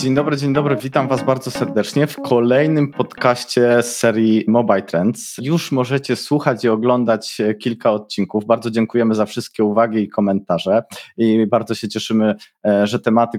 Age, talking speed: 20-39, 155 wpm